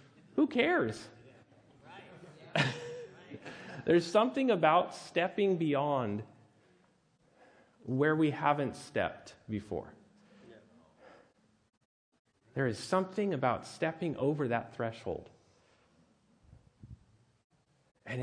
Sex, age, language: male, 40-59, English